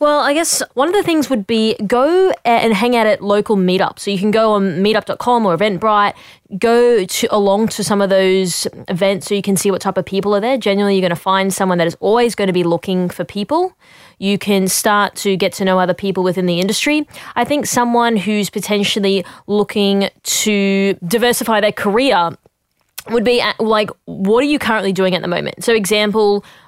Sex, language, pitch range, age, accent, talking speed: female, English, 185-220 Hz, 20-39, Australian, 205 wpm